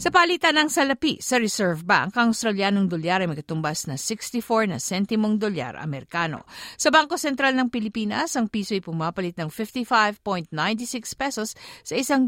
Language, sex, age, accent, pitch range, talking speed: Filipino, female, 50-69, native, 170-245 Hz, 165 wpm